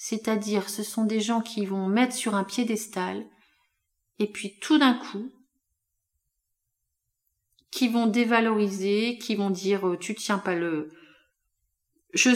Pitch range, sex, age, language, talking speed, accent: 185-235 Hz, female, 30-49, French, 130 wpm, French